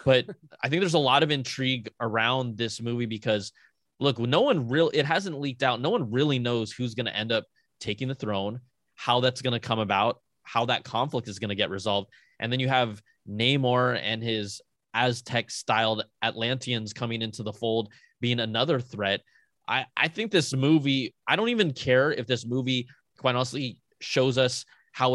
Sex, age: male, 20-39